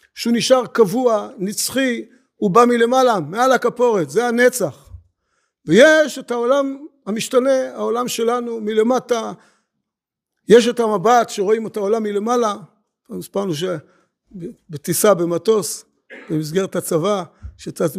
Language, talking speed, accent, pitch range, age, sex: Hebrew, 105 wpm, native, 185-240 Hz, 60-79, male